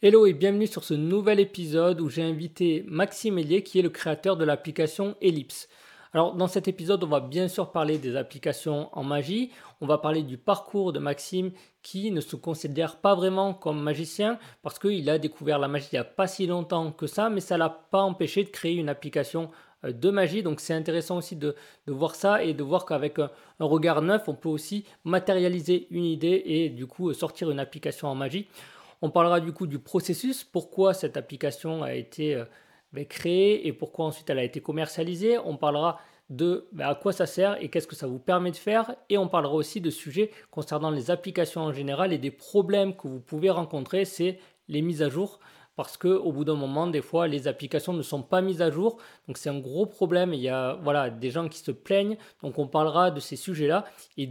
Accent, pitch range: French, 150-190 Hz